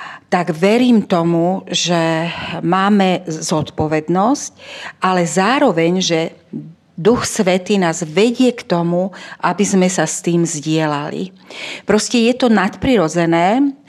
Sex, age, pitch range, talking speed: female, 40-59, 175-215 Hz, 110 wpm